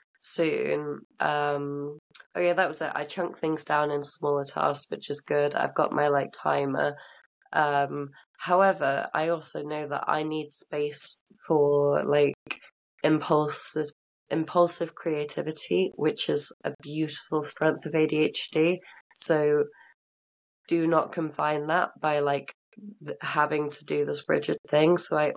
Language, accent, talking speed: English, British, 145 wpm